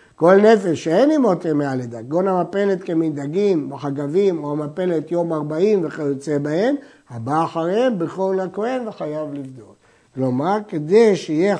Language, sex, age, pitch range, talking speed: Hebrew, male, 60-79, 150-205 Hz, 130 wpm